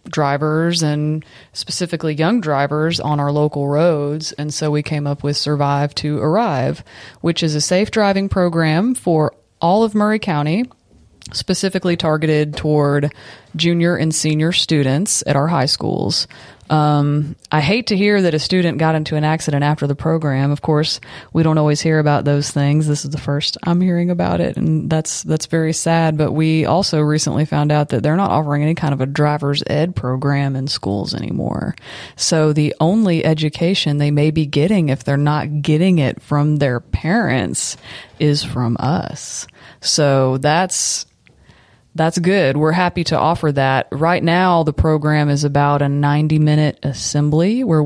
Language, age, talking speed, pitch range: English, 30-49, 170 wpm, 145-160 Hz